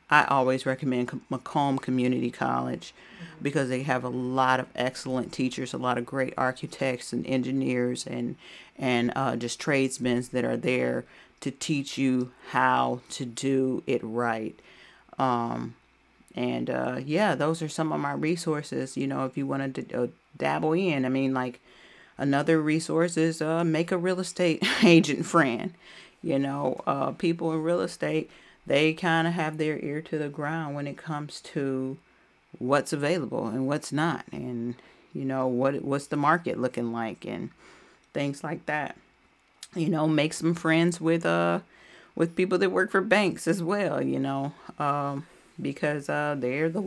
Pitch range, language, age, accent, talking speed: 130-160 Hz, English, 40-59, American, 165 wpm